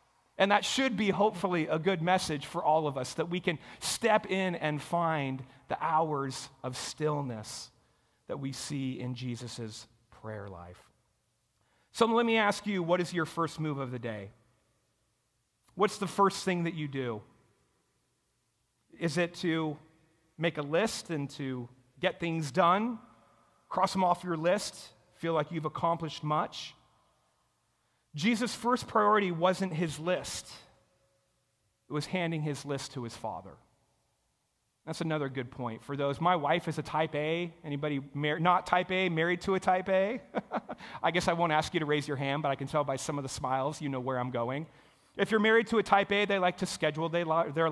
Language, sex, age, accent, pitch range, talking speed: English, male, 40-59, American, 135-180 Hz, 180 wpm